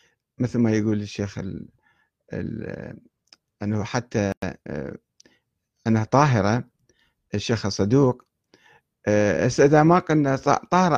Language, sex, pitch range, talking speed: Arabic, male, 110-145 Hz, 80 wpm